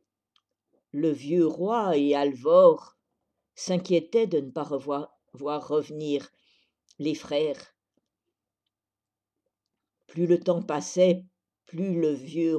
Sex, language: female, French